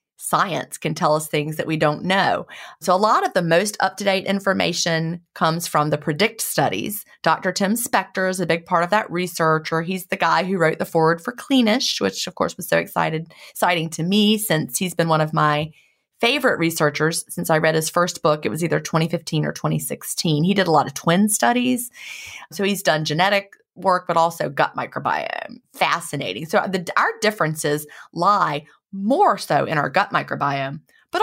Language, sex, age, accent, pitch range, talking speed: English, female, 30-49, American, 160-200 Hz, 190 wpm